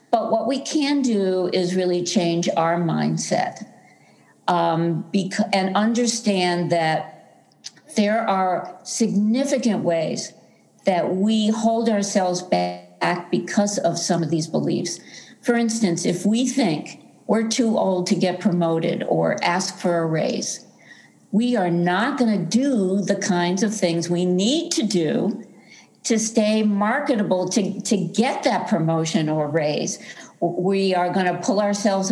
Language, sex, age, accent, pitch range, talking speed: English, female, 50-69, American, 175-220 Hz, 140 wpm